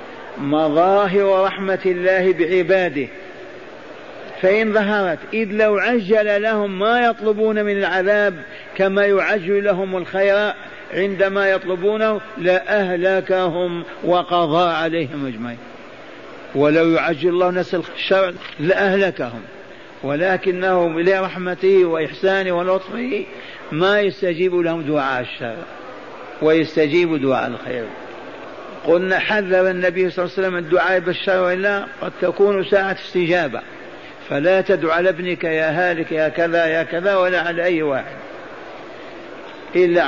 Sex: male